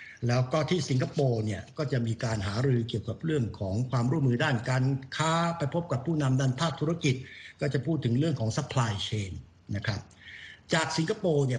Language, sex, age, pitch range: Thai, male, 60-79, 110-140 Hz